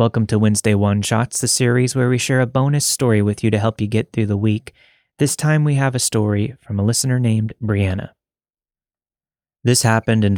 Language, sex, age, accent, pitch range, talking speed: English, male, 30-49, American, 100-135 Hz, 210 wpm